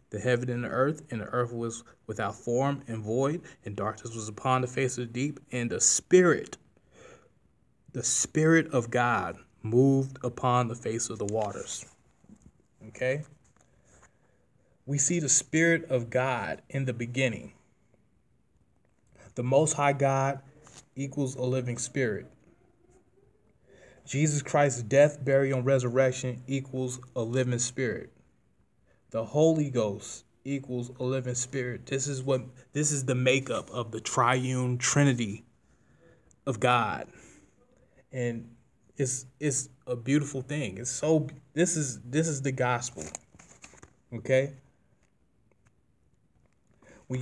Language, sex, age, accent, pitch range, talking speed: English, male, 20-39, American, 120-140 Hz, 125 wpm